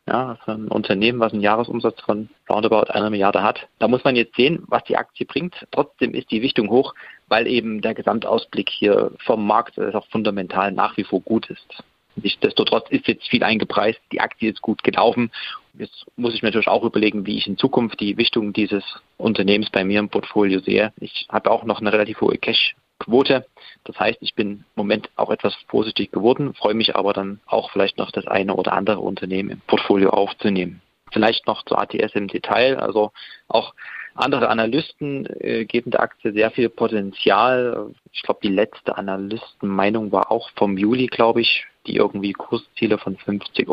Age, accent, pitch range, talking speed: 30-49, German, 100-115 Hz, 190 wpm